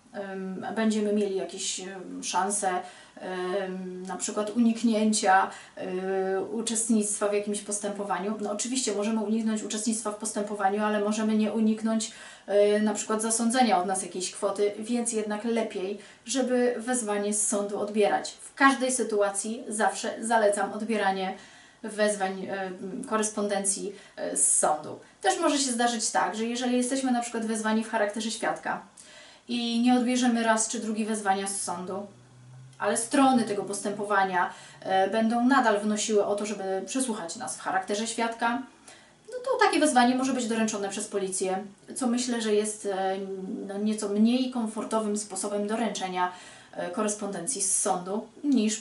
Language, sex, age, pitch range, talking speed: Polish, female, 30-49, 200-235 Hz, 130 wpm